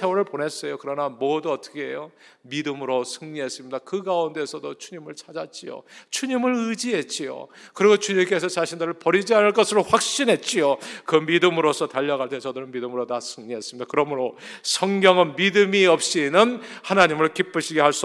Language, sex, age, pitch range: Korean, male, 40-59, 140-205 Hz